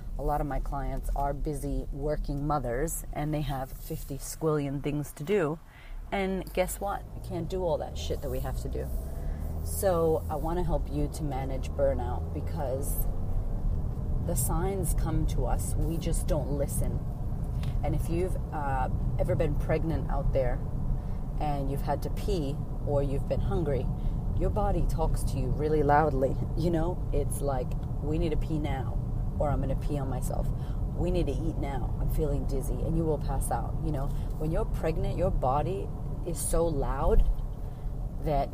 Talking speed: 180 wpm